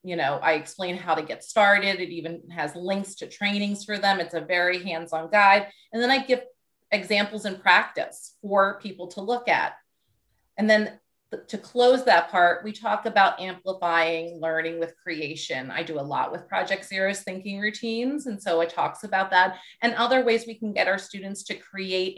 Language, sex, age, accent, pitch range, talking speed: English, female, 30-49, American, 170-205 Hz, 190 wpm